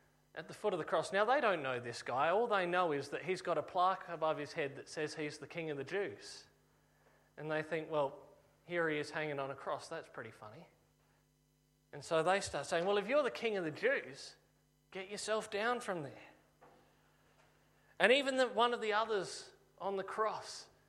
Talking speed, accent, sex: 210 wpm, Australian, male